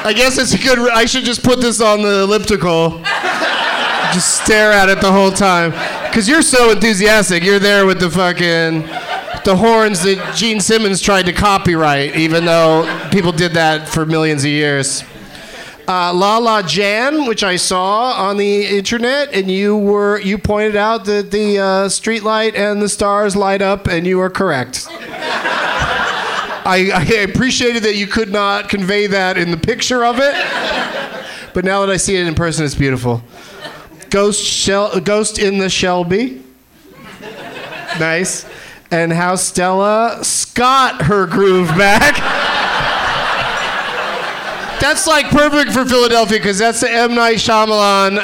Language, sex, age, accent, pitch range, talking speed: English, male, 30-49, American, 185-220 Hz, 150 wpm